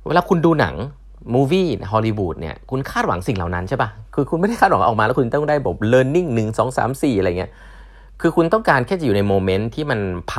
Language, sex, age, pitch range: Thai, male, 30-49, 95-130 Hz